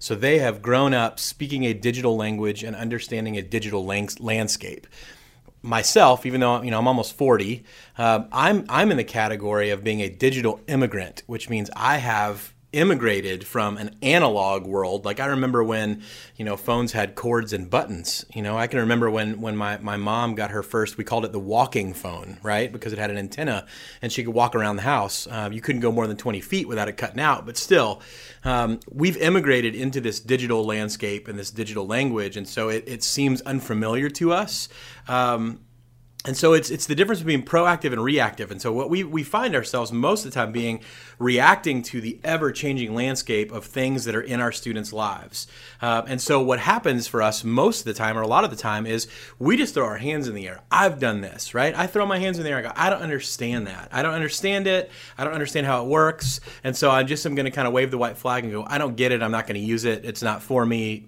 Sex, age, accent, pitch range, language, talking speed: male, 30-49, American, 110-130 Hz, English, 230 wpm